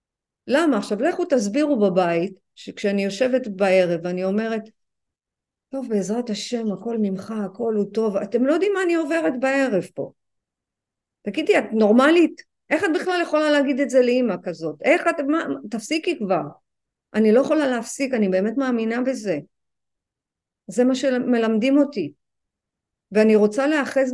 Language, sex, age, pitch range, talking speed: Hebrew, female, 50-69, 205-275 Hz, 145 wpm